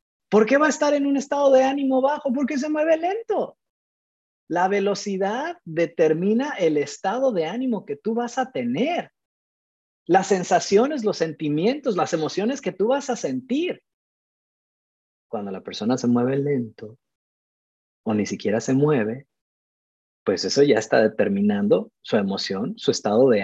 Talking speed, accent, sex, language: 150 wpm, Mexican, male, Spanish